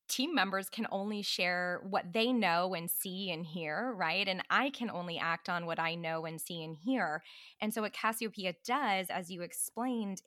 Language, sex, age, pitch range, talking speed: English, female, 20-39, 170-210 Hz, 200 wpm